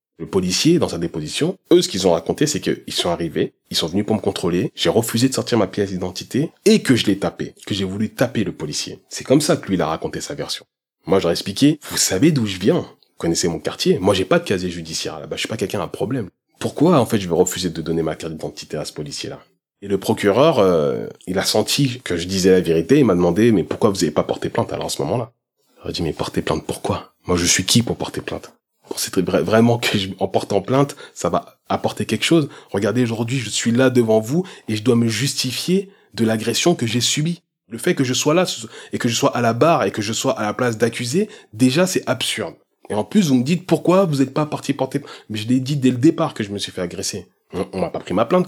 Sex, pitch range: male, 100-135 Hz